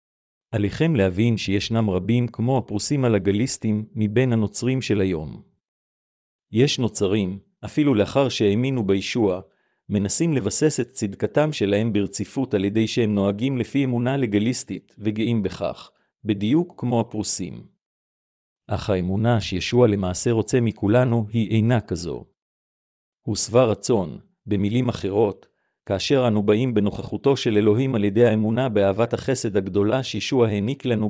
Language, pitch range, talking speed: Hebrew, 105-125 Hz, 125 wpm